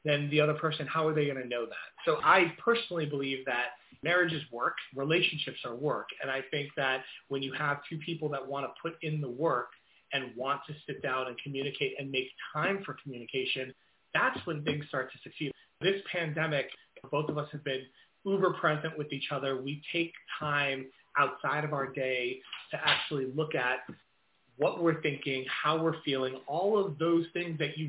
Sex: male